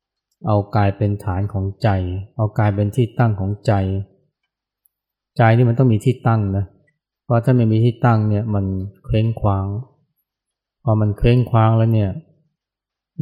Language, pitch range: Thai, 100-120 Hz